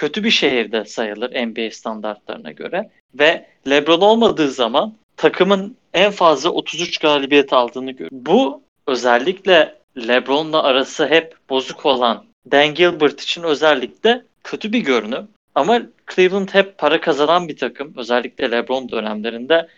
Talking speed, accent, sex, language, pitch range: 125 wpm, native, male, Turkish, 130-185 Hz